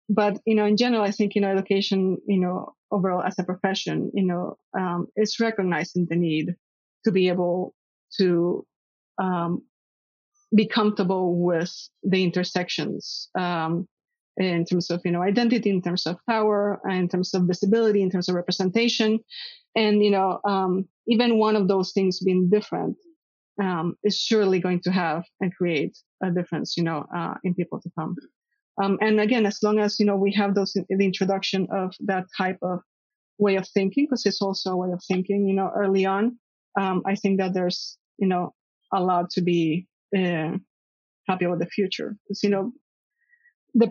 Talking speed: 175 wpm